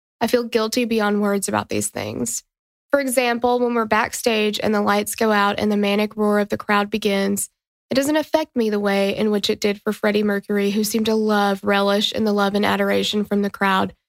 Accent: American